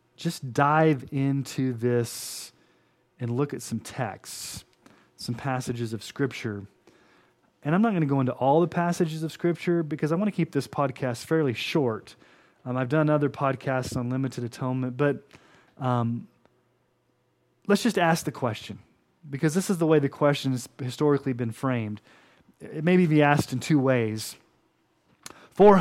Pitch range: 125-160 Hz